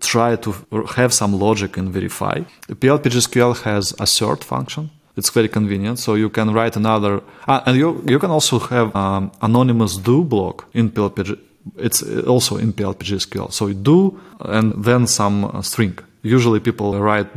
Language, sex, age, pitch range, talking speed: English, male, 20-39, 105-130 Hz, 170 wpm